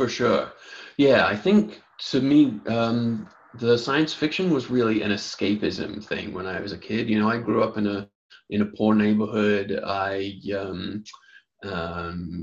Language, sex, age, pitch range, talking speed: English, male, 20-39, 100-115 Hz, 170 wpm